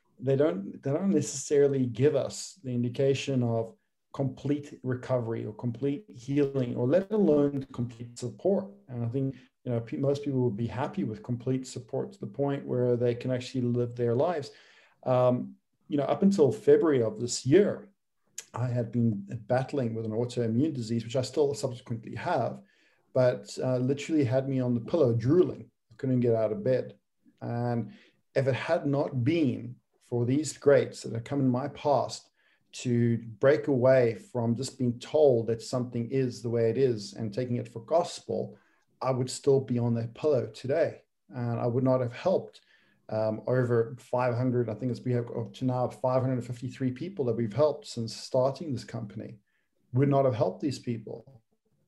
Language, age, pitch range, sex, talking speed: English, 40-59, 120-135 Hz, male, 180 wpm